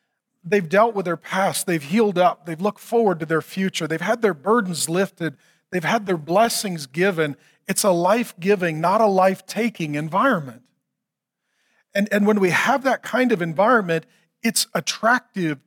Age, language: 40-59, English